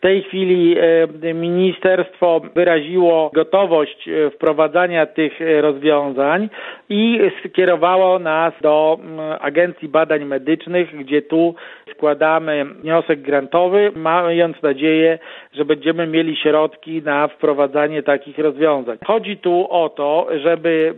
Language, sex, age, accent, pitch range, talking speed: Polish, male, 50-69, native, 155-180 Hz, 105 wpm